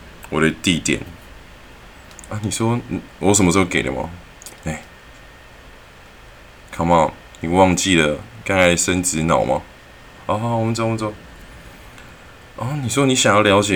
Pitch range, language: 80-110 Hz, Chinese